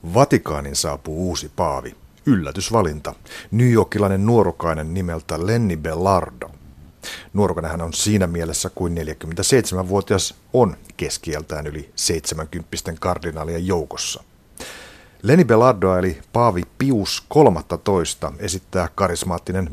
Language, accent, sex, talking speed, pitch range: Finnish, native, male, 95 wpm, 80-100 Hz